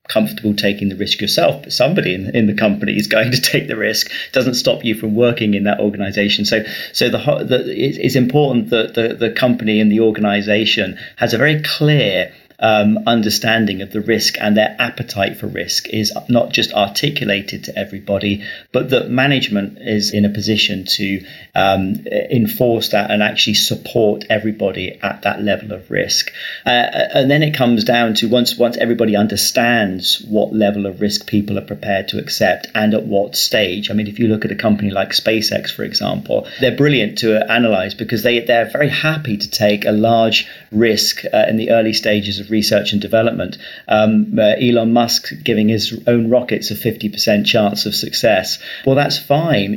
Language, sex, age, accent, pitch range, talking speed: English, male, 40-59, British, 105-120 Hz, 185 wpm